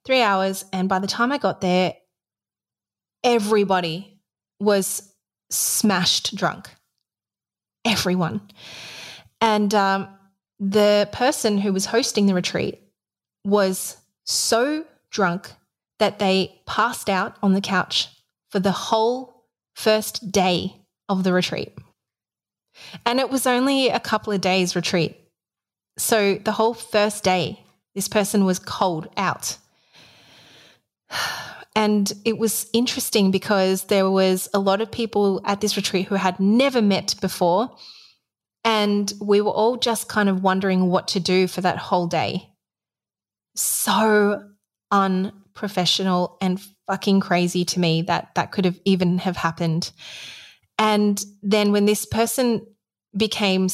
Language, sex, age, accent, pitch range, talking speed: English, female, 20-39, Australian, 185-215 Hz, 125 wpm